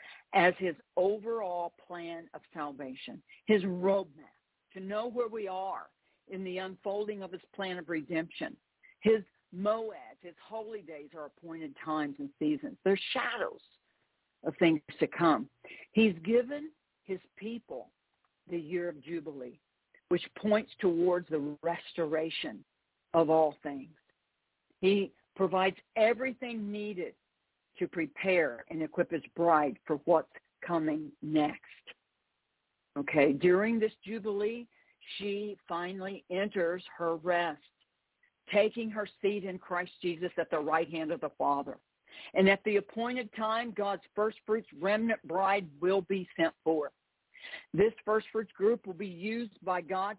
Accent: American